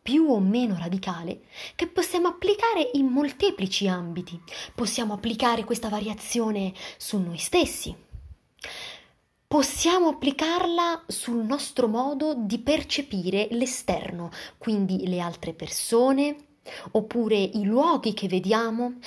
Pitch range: 160-250 Hz